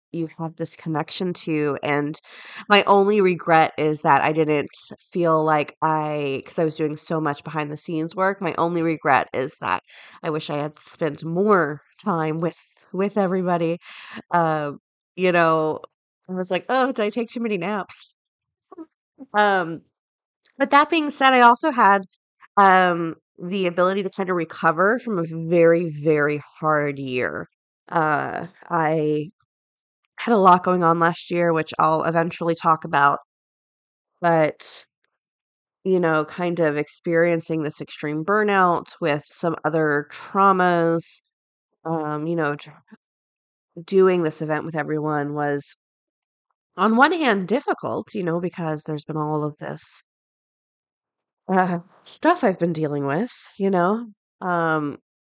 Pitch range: 155-190 Hz